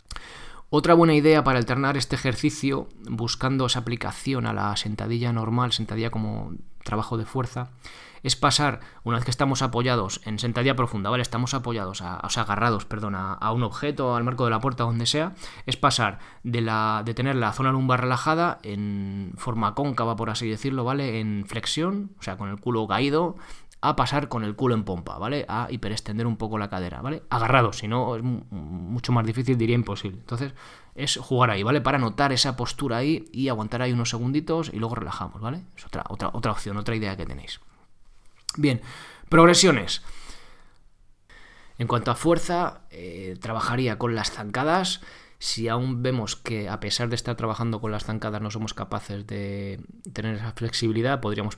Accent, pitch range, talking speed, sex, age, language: Spanish, 105-130 Hz, 180 wpm, male, 20-39, Spanish